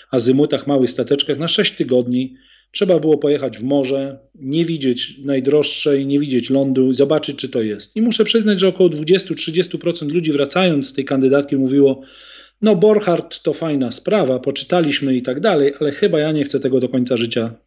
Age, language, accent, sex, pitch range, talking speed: 40-59, Polish, native, male, 130-165 Hz, 175 wpm